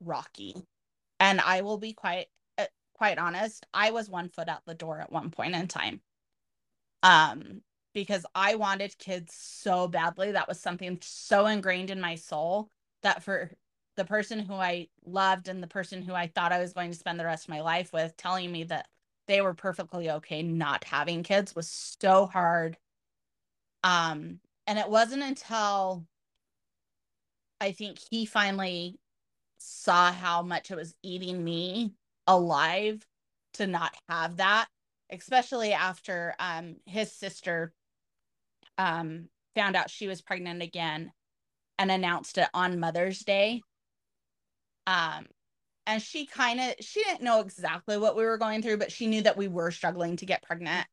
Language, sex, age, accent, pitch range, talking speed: English, female, 20-39, American, 170-205 Hz, 160 wpm